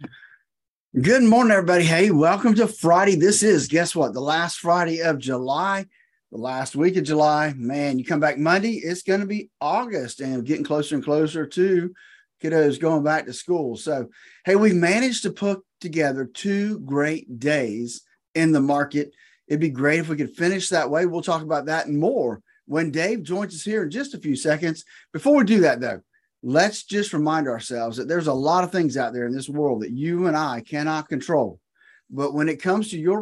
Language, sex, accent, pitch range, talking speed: English, male, American, 145-195 Hz, 200 wpm